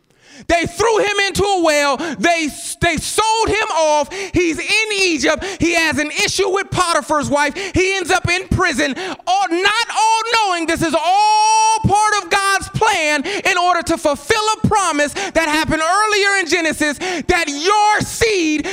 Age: 20-39